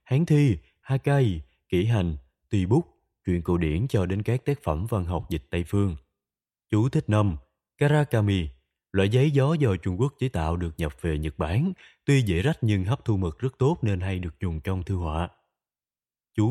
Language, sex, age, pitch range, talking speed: Vietnamese, male, 20-39, 90-130 Hz, 195 wpm